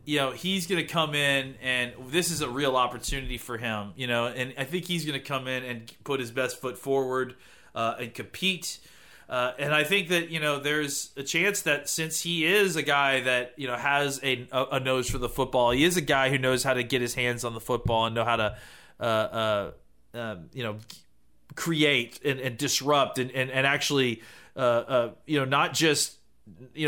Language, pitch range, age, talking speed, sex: English, 125-155 Hz, 30-49, 220 wpm, male